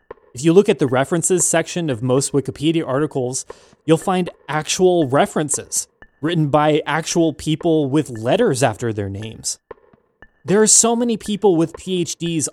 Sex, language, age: male, English, 20-39